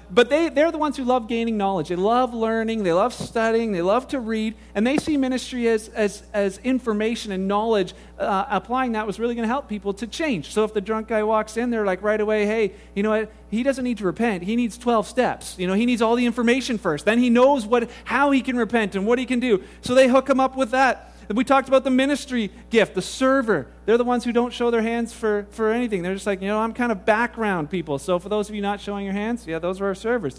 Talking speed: 265 wpm